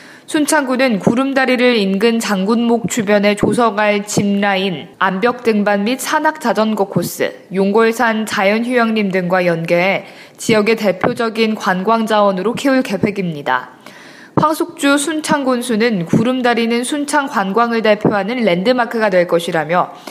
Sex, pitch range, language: female, 195-255 Hz, Korean